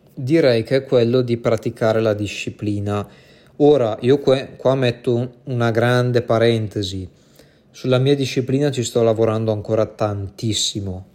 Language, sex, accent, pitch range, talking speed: Italian, male, native, 110-130 Hz, 125 wpm